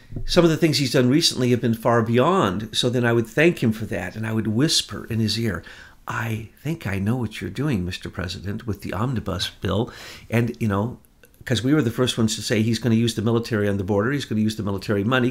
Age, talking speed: 50-69, 260 wpm